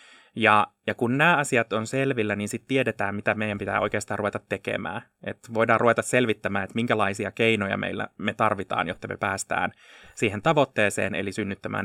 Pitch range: 100-115 Hz